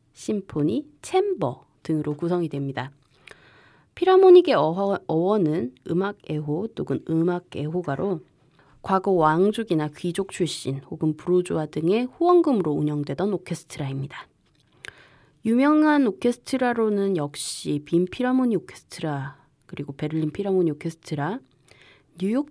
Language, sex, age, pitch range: Korean, female, 20-39, 150-240 Hz